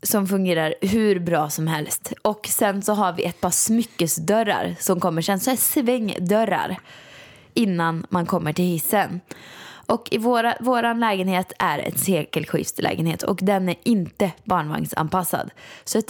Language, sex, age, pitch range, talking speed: Swedish, female, 20-39, 175-230 Hz, 145 wpm